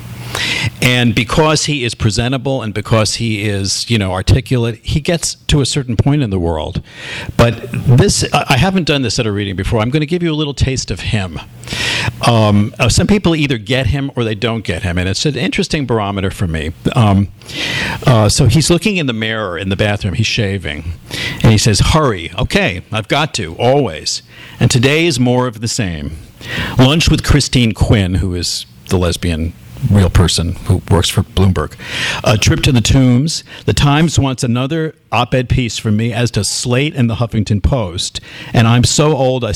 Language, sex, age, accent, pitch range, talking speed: English, male, 50-69, American, 100-135 Hz, 190 wpm